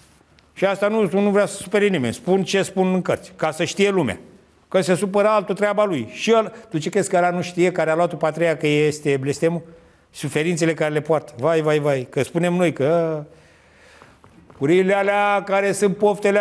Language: Romanian